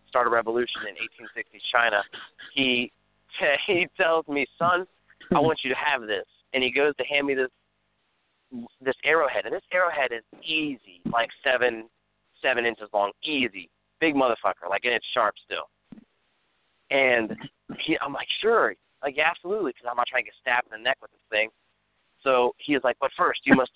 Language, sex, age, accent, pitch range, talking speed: English, male, 30-49, American, 115-145 Hz, 185 wpm